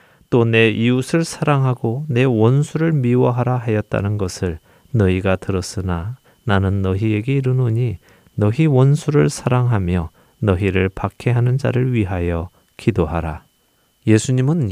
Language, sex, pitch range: Korean, male, 95-125 Hz